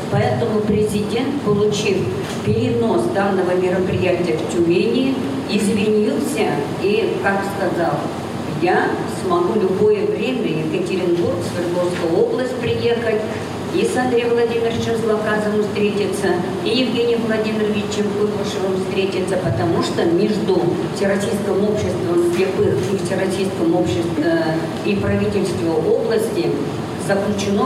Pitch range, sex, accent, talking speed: 180-215 Hz, female, native, 90 wpm